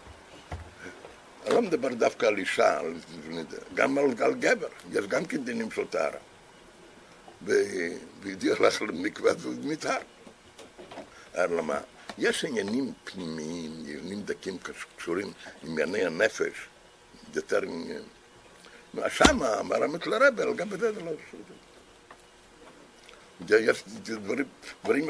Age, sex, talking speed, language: 60-79, male, 100 wpm, Hebrew